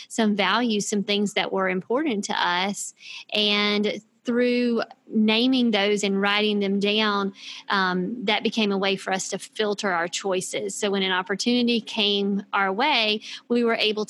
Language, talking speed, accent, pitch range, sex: English, 160 wpm, American, 200-225 Hz, female